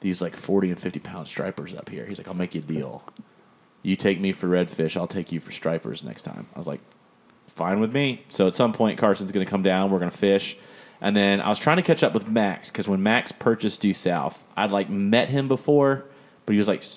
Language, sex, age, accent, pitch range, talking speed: English, male, 30-49, American, 90-105 Hz, 255 wpm